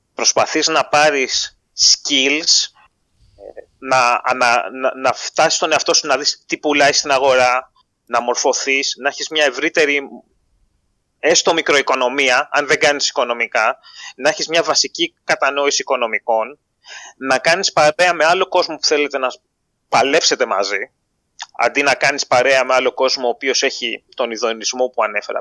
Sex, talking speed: male, 140 wpm